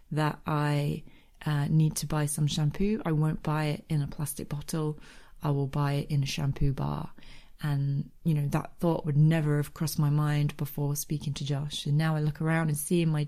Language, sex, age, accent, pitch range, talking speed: English, female, 30-49, British, 145-165 Hz, 215 wpm